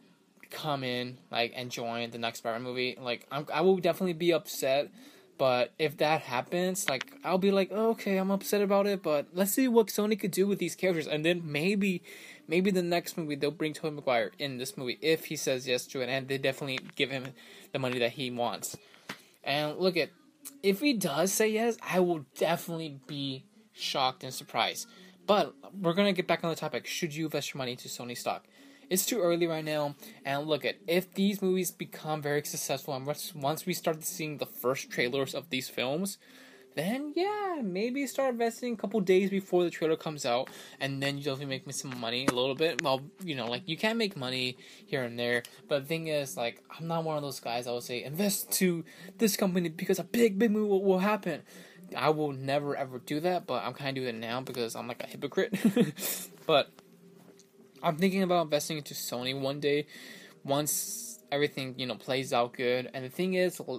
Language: English